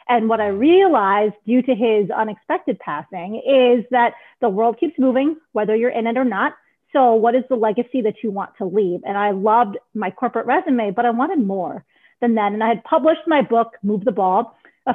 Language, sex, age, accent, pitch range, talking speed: English, female, 30-49, American, 225-275 Hz, 215 wpm